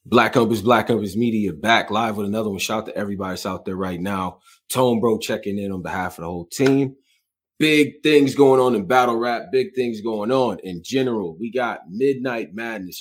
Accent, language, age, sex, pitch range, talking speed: American, English, 30-49, male, 90-115 Hz, 210 wpm